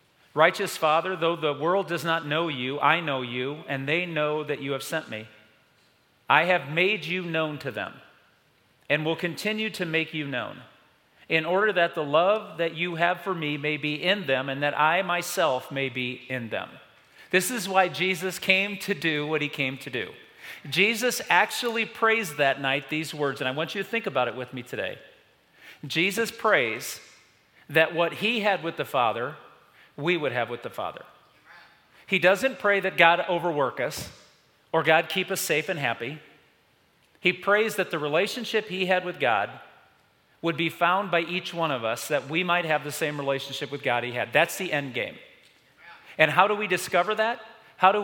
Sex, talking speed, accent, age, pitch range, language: male, 195 wpm, American, 40-59, 150-190 Hz, English